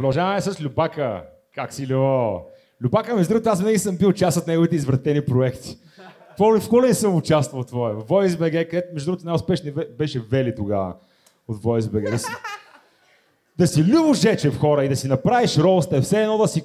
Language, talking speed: Bulgarian, 190 wpm